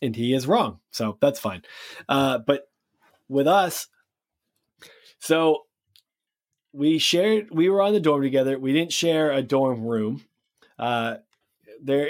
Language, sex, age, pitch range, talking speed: English, male, 20-39, 115-140 Hz, 140 wpm